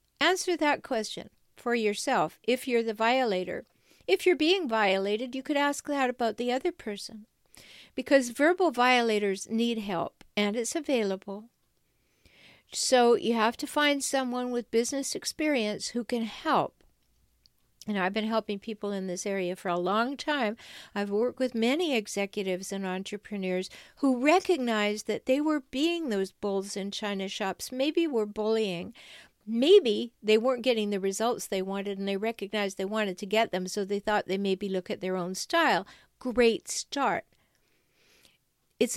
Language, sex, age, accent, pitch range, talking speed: English, female, 60-79, American, 205-270 Hz, 160 wpm